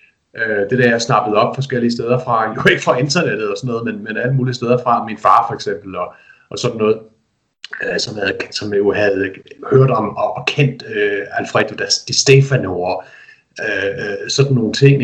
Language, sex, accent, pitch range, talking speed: Danish, male, native, 110-140 Hz, 175 wpm